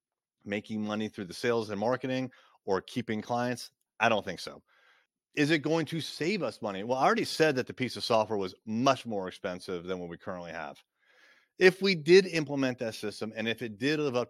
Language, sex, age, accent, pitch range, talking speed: English, male, 30-49, American, 100-140 Hz, 215 wpm